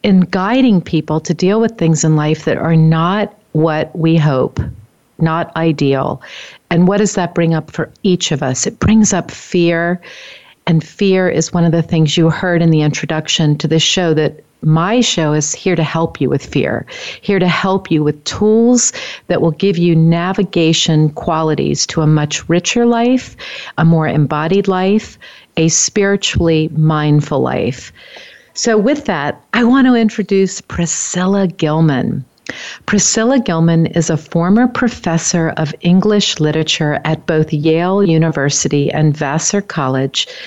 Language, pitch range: English, 155-195 Hz